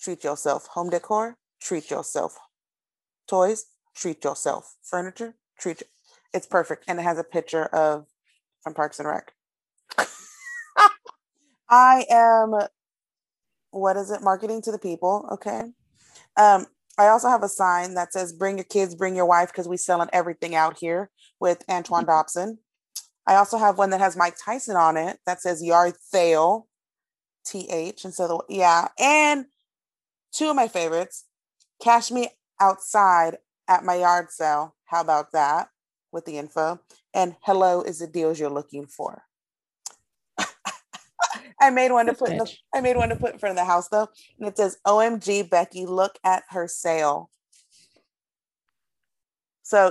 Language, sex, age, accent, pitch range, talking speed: English, female, 30-49, American, 170-225 Hz, 160 wpm